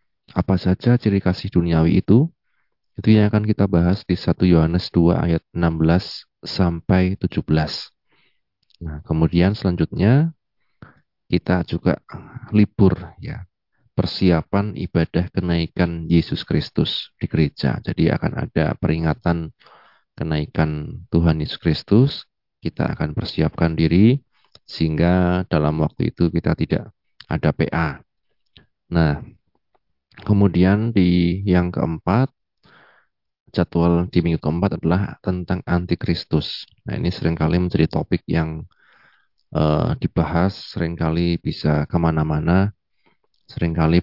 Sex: male